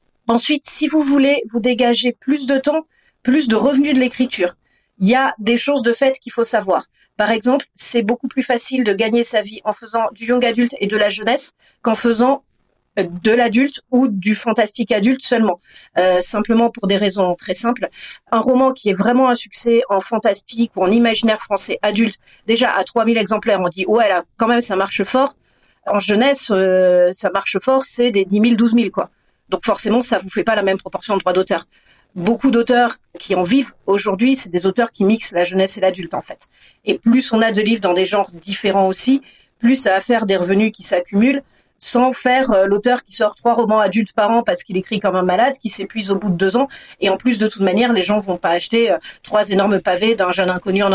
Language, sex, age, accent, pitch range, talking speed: French, female, 40-59, French, 195-245 Hz, 225 wpm